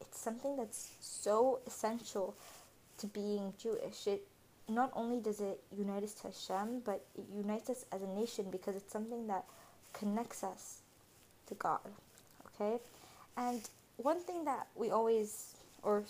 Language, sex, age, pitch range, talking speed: English, female, 20-39, 205-245 Hz, 145 wpm